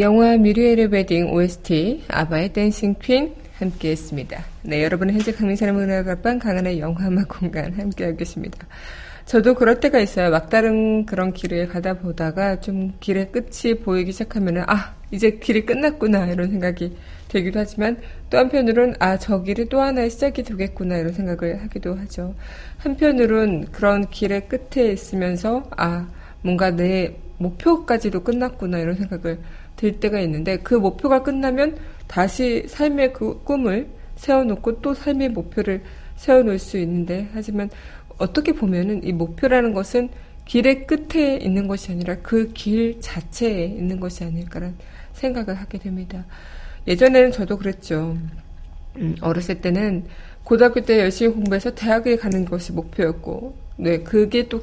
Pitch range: 180-235 Hz